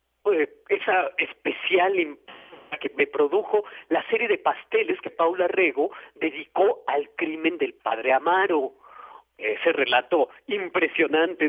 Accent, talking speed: Mexican, 115 wpm